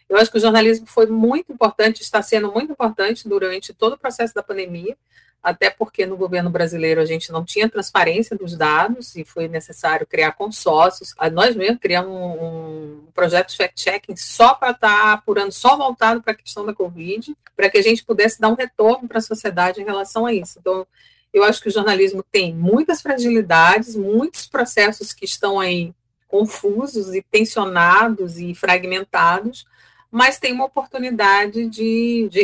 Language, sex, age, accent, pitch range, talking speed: Portuguese, female, 40-59, Brazilian, 180-225 Hz, 170 wpm